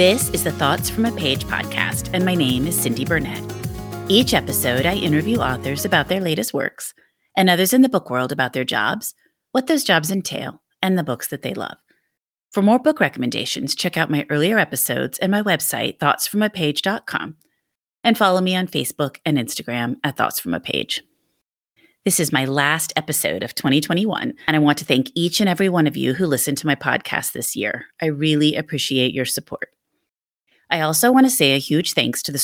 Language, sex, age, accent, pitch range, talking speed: English, female, 30-49, American, 140-185 Hz, 195 wpm